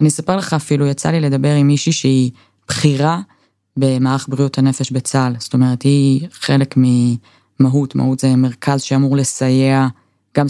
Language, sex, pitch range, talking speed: Hebrew, female, 130-145 Hz, 150 wpm